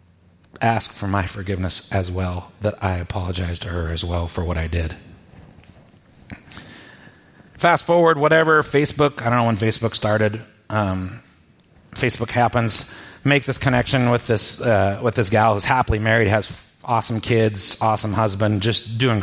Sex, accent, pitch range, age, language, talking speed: male, American, 95-130 Hz, 30-49, English, 155 wpm